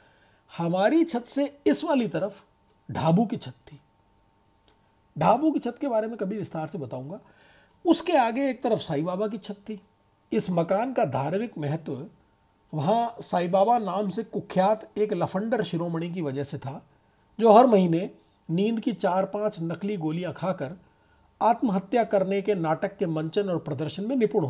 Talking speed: 150 wpm